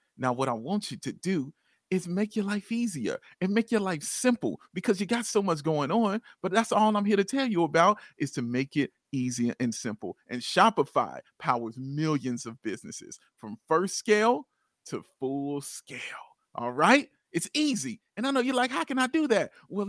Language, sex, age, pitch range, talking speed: English, male, 40-59, 150-235 Hz, 200 wpm